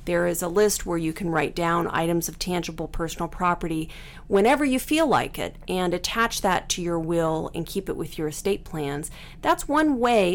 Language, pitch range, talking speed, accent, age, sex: English, 170-240 Hz, 205 wpm, American, 40-59, female